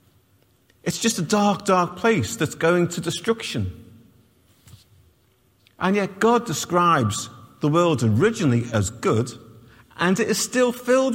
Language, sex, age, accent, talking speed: English, male, 40-59, British, 130 wpm